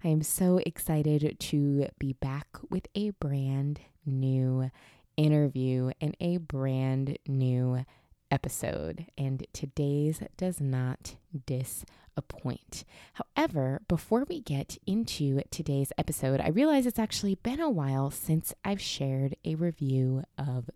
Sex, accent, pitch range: female, American, 135-170 Hz